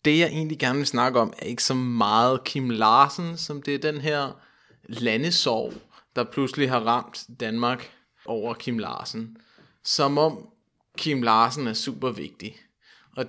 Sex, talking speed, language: male, 160 wpm, Danish